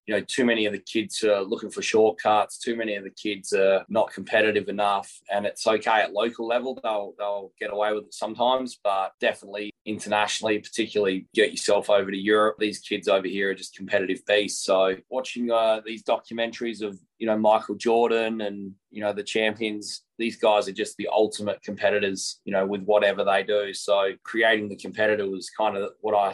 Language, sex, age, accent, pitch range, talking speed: English, male, 20-39, Australian, 100-110 Hz, 195 wpm